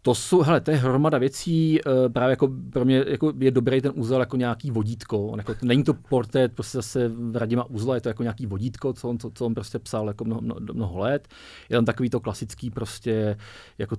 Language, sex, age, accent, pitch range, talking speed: Czech, male, 40-59, native, 100-115 Hz, 220 wpm